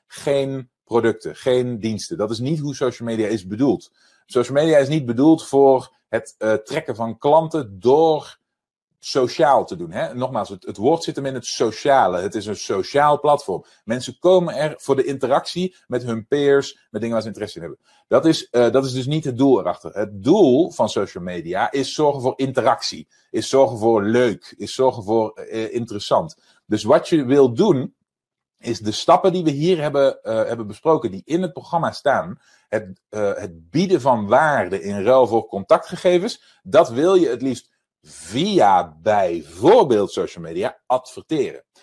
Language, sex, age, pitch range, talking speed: Dutch, male, 40-59, 115-160 Hz, 175 wpm